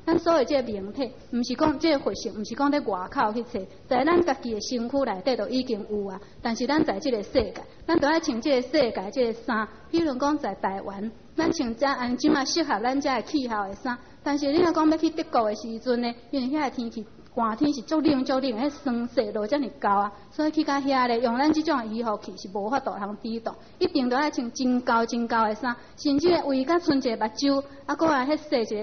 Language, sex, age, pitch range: English, female, 30-49, 230-290 Hz